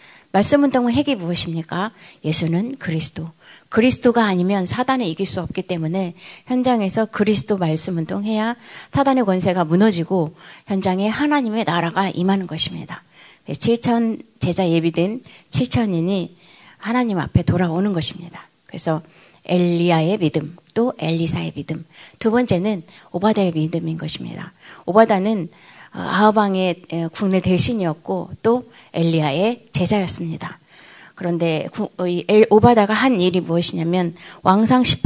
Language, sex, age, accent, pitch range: Korean, female, 30-49, native, 165-215 Hz